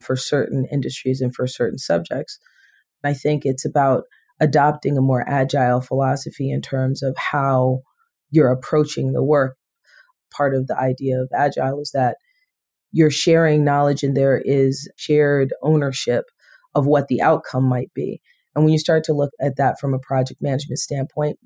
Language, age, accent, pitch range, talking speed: English, 40-59, American, 135-150 Hz, 165 wpm